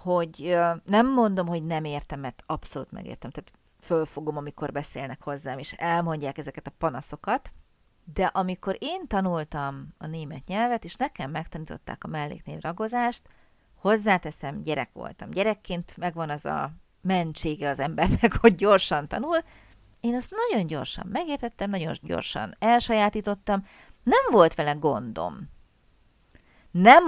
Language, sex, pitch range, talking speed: Hungarian, female, 155-225 Hz, 130 wpm